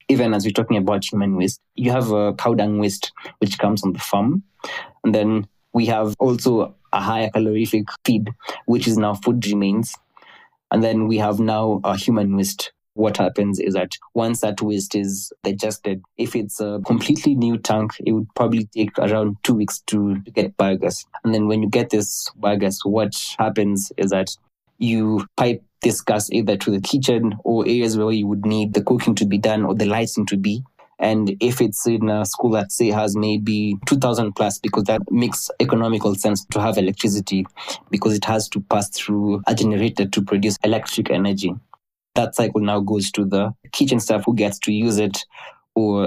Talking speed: 190 wpm